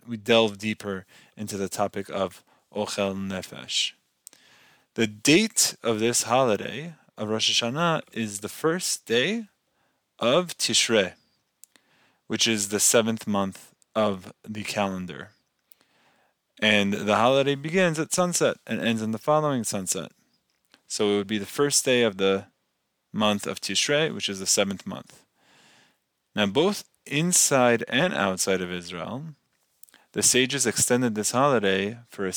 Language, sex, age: English, male, 20-39